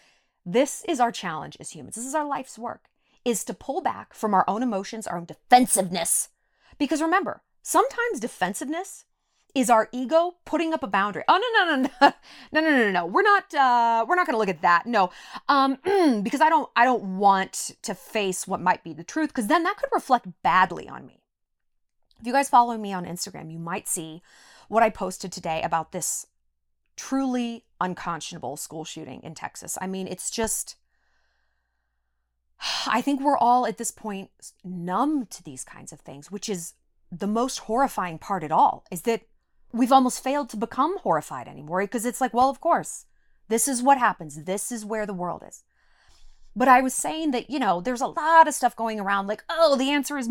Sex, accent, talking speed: female, American, 195 wpm